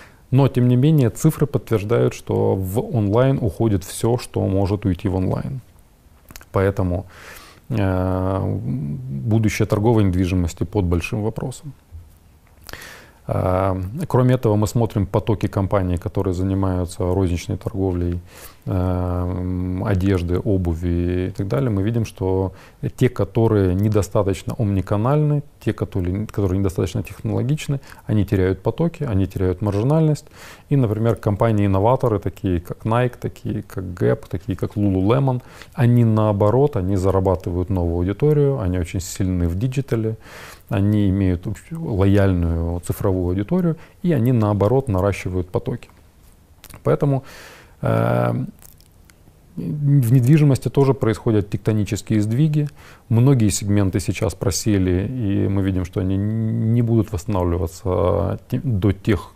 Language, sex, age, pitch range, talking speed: Ukrainian, male, 30-49, 95-120 Hz, 110 wpm